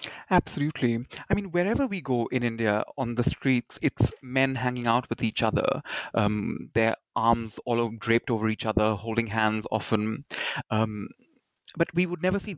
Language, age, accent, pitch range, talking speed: English, 30-49, Indian, 115-150 Hz, 170 wpm